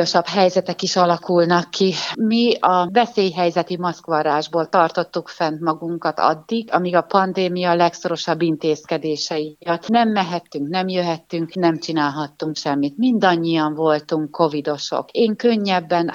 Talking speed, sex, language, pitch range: 110 wpm, female, Hungarian, 165-210 Hz